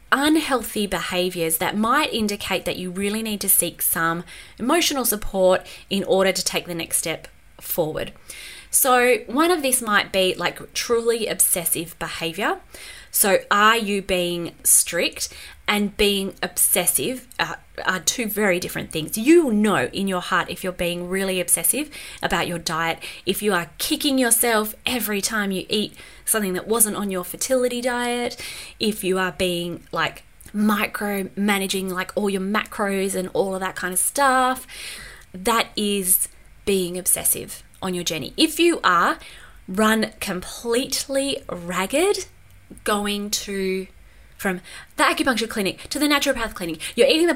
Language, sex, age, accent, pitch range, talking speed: English, female, 20-39, Australian, 185-235 Hz, 150 wpm